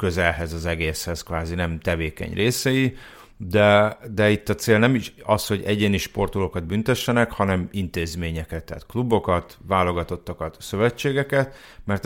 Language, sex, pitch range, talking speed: Hungarian, male, 85-105 Hz, 130 wpm